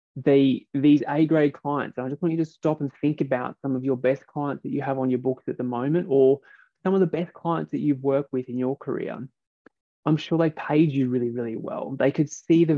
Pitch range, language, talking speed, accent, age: 130-155 Hz, English, 240 wpm, Australian, 20-39